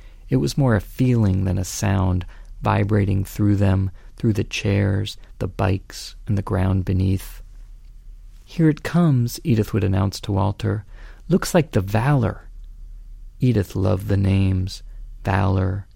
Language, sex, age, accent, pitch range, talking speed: English, male, 40-59, American, 95-110 Hz, 140 wpm